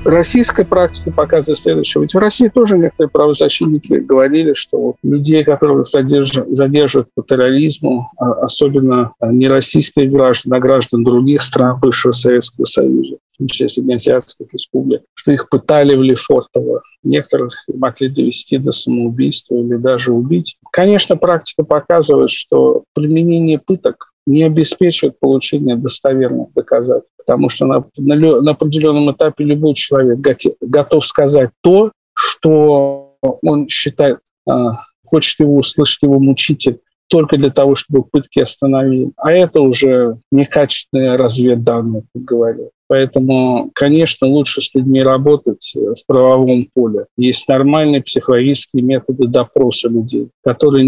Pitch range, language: 125-155 Hz, Russian